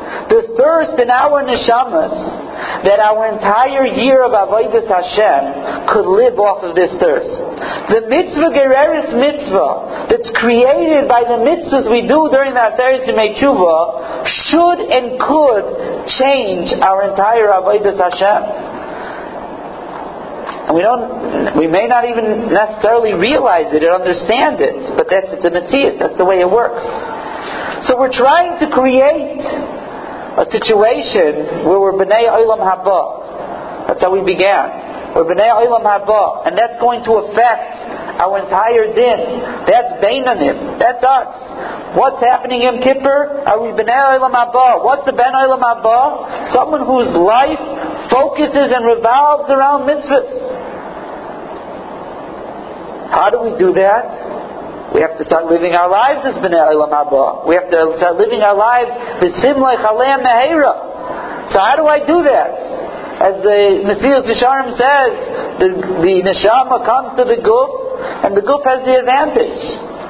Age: 50-69